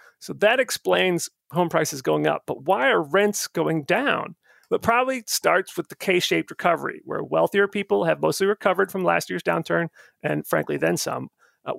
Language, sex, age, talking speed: English, male, 40-59, 180 wpm